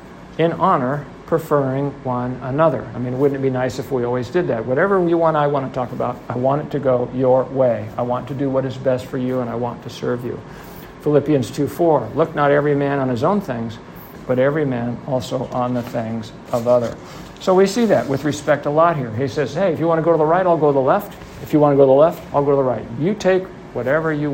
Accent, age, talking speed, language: American, 50-69, 265 wpm, English